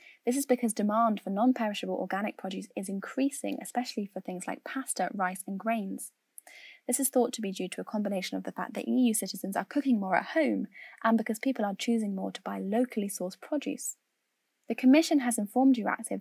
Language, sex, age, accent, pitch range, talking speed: English, female, 10-29, British, 190-250 Hz, 200 wpm